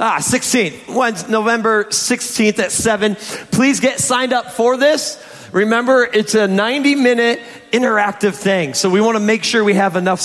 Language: English